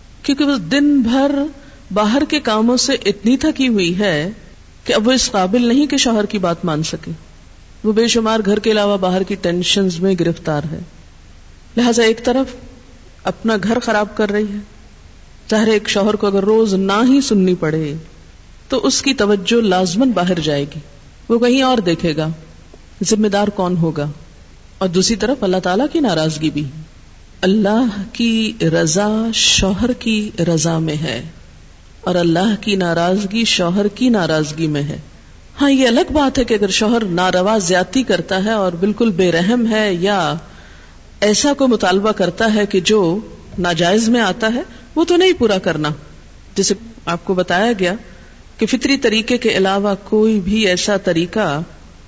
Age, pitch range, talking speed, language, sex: 50-69, 170-225 Hz, 170 wpm, Urdu, female